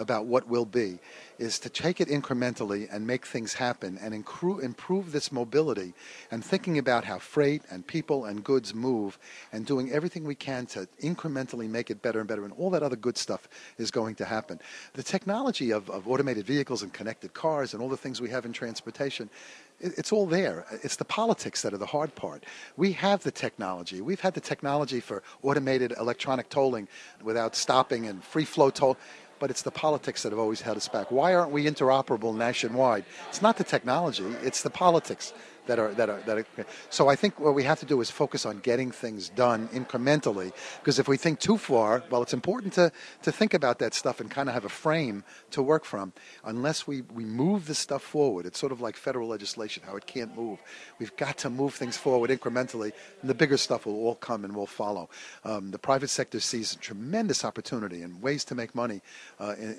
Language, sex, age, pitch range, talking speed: English, male, 50-69, 110-145 Hz, 210 wpm